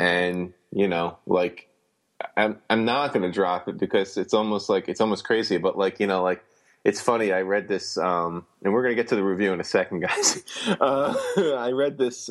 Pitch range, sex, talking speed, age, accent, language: 90-110 Hz, male, 220 wpm, 30-49, American, English